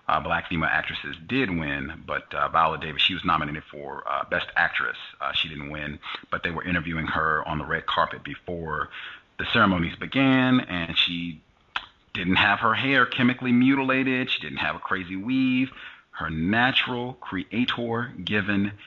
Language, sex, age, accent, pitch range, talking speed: English, male, 30-49, American, 85-115 Hz, 160 wpm